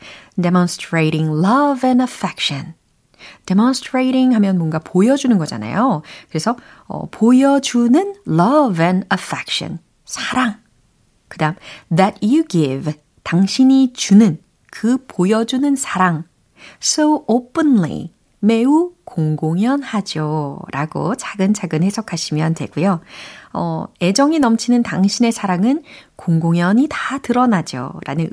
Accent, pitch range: native, 160-250 Hz